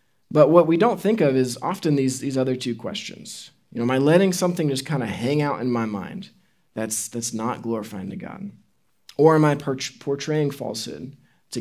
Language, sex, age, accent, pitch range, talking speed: English, male, 20-39, American, 130-175 Hz, 205 wpm